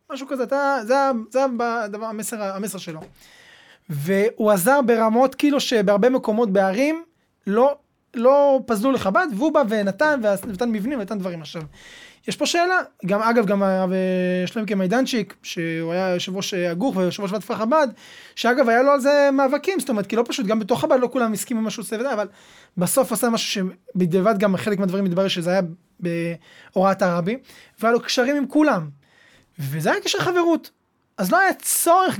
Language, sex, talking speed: Hebrew, male, 170 wpm